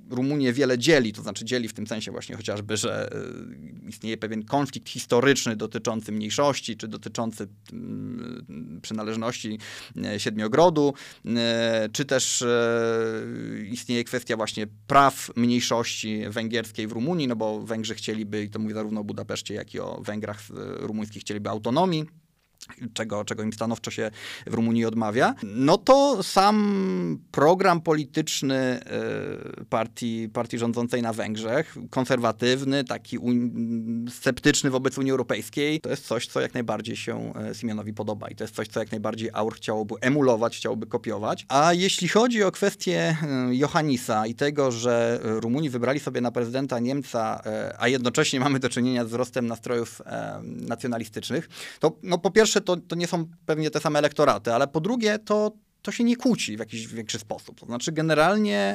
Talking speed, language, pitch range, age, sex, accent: 150 wpm, Polish, 110-145 Hz, 20-39, male, native